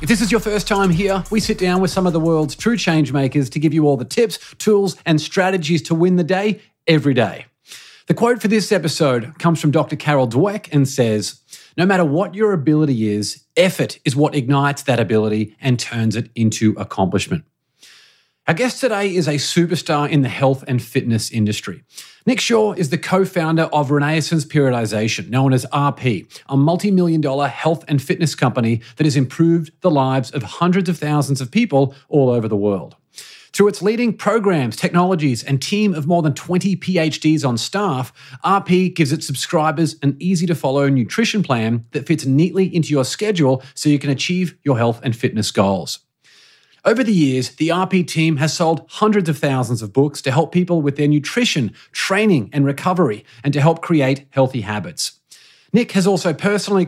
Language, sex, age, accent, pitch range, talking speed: English, male, 30-49, Australian, 135-180 Hz, 190 wpm